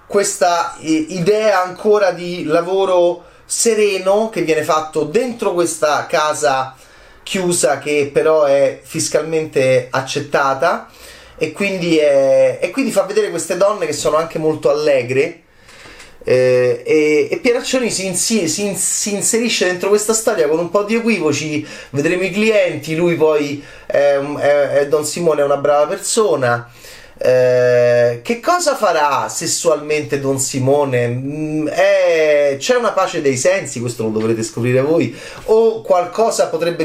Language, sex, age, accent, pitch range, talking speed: Italian, male, 30-49, native, 135-200 Hz, 130 wpm